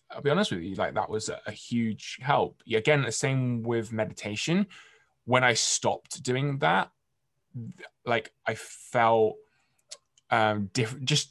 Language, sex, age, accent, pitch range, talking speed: English, male, 10-29, British, 110-130 Hz, 145 wpm